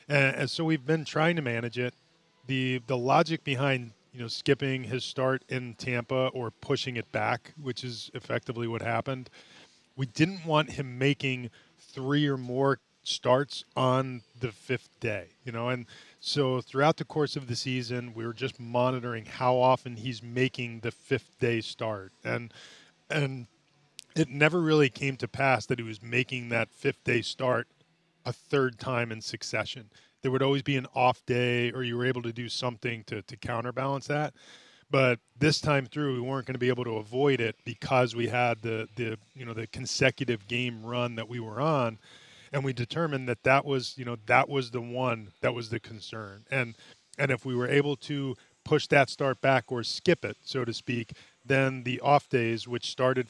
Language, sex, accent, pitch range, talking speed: English, male, American, 120-135 Hz, 190 wpm